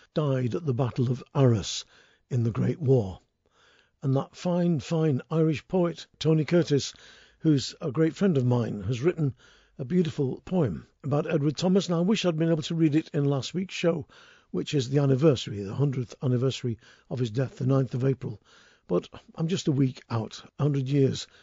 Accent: British